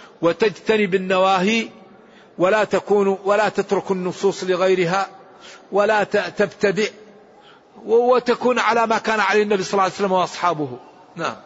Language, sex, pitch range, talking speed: Arabic, male, 190-215 Hz, 115 wpm